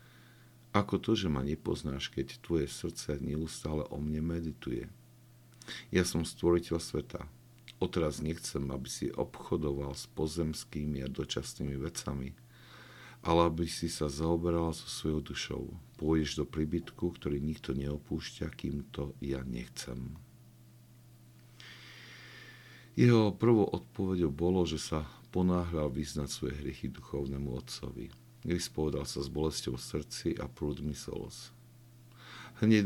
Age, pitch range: 50-69, 75-115 Hz